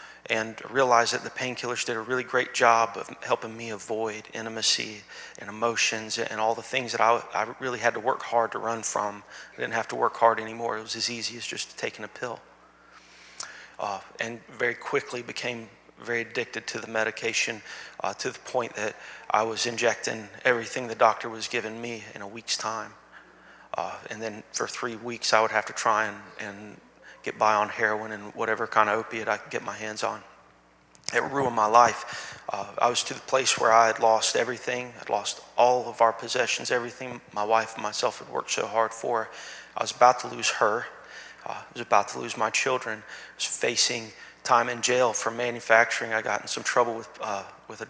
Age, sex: 30-49, male